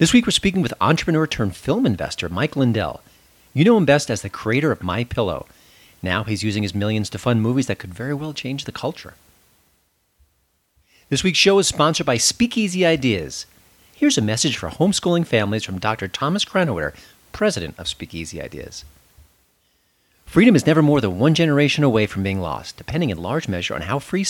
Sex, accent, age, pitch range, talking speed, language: male, American, 40-59, 95-155 Hz, 185 wpm, English